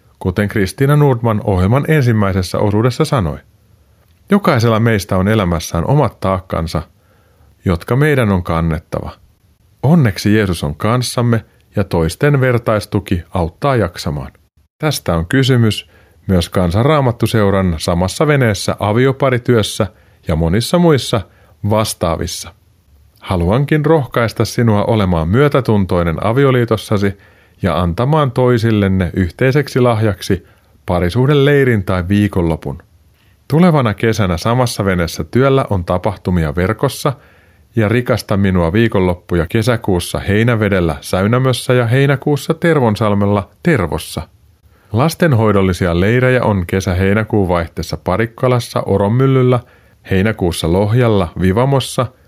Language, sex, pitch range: Finnish, male, 90-120 Hz